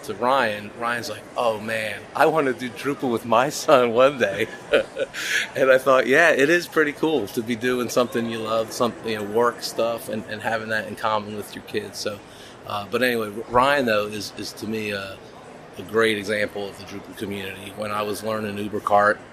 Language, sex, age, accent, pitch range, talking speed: English, male, 30-49, American, 105-125 Hz, 210 wpm